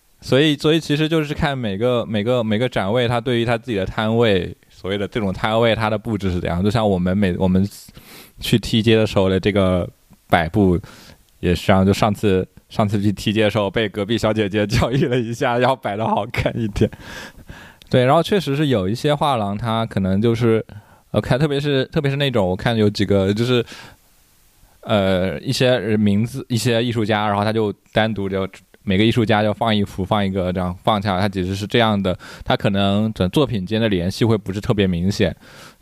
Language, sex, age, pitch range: Chinese, male, 20-39, 95-120 Hz